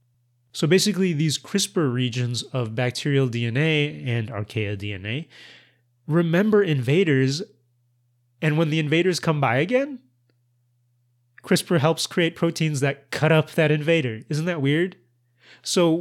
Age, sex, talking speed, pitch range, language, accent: 30-49, male, 125 wpm, 120-150 Hz, English, American